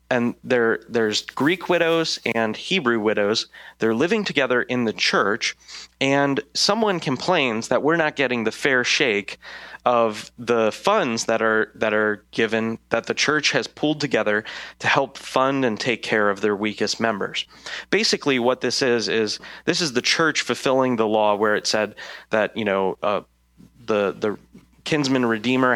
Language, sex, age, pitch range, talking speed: English, male, 30-49, 110-145 Hz, 165 wpm